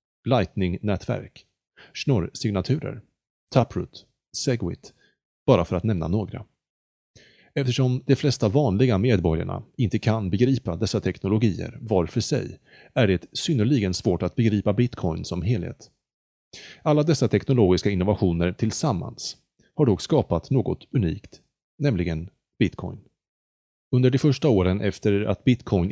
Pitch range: 95-125 Hz